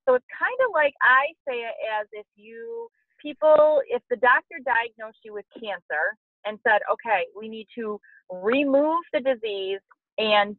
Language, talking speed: English, 165 wpm